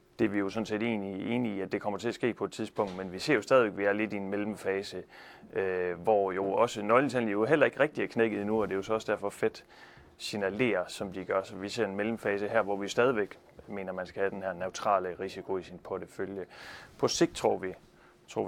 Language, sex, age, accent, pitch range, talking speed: Danish, male, 30-49, native, 95-120 Hz, 260 wpm